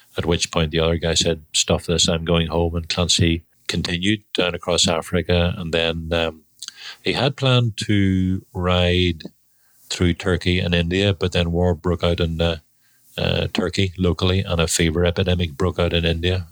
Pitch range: 85-95 Hz